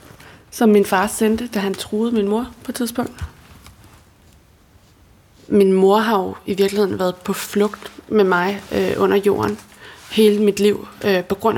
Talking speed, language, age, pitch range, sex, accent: 165 wpm, Danish, 20-39, 190-210 Hz, female, native